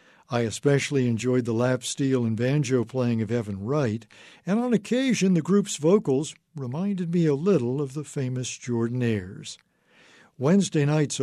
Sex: male